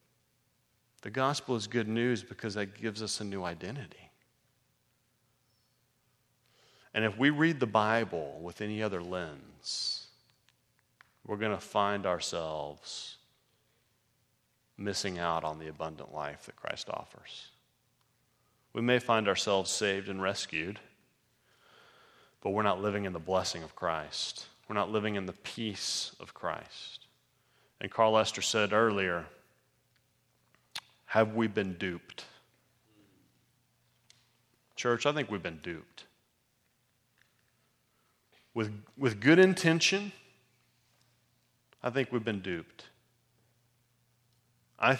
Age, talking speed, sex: 30-49, 115 wpm, male